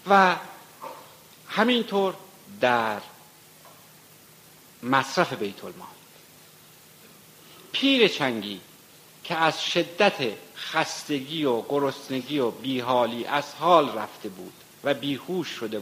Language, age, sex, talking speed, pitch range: Persian, 60-79, male, 85 wpm, 115-155 Hz